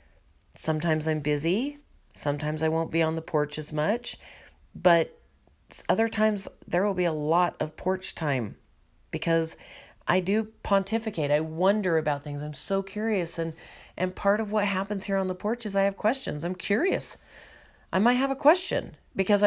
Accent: American